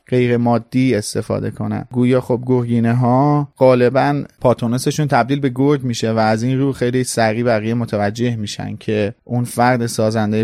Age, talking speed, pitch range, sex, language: 30-49, 155 wpm, 120-145 Hz, male, Persian